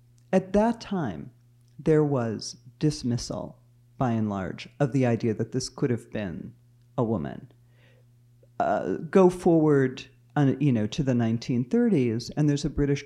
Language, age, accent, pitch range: English, 40-59, American, 120-160 Hz